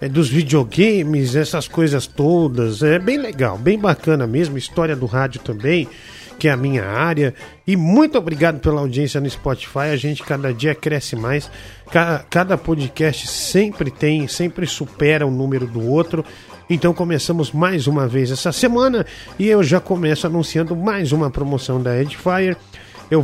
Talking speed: 160 wpm